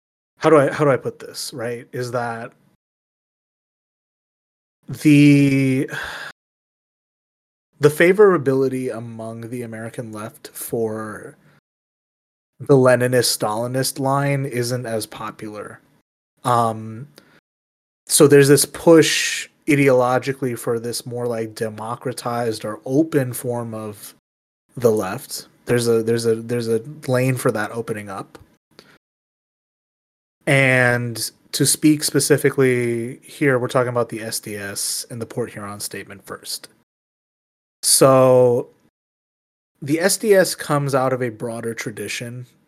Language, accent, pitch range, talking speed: English, American, 110-135 Hz, 110 wpm